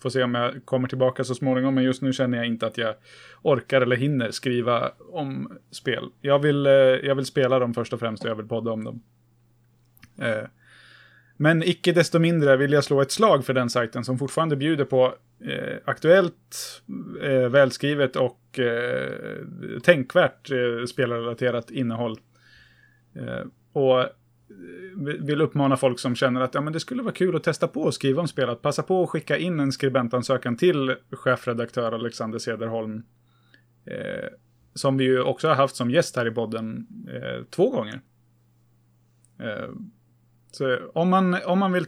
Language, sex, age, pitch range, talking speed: Swedish, male, 30-49, 120-145 Hz, 160 wpm